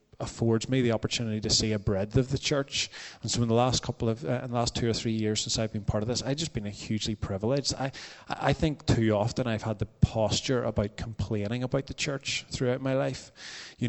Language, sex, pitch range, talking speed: English, male, 110-130 Hz, 240 wpm